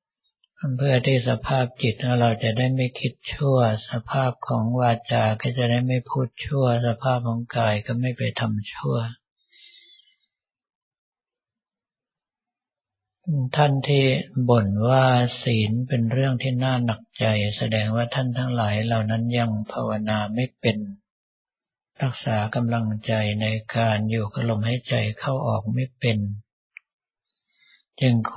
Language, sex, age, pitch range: Thai, male, 60-79, 110-130 Hz